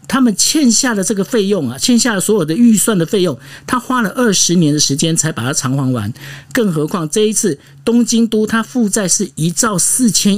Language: Chinese